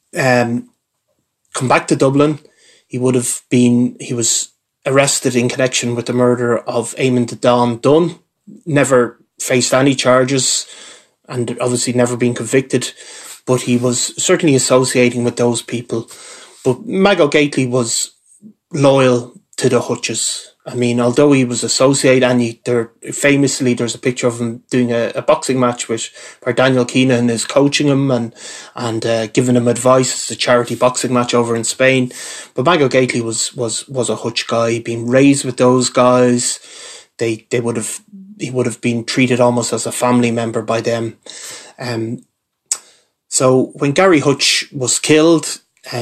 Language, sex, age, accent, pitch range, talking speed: English, male, 20-39, Irish, 120-130 Hz, 165 wpm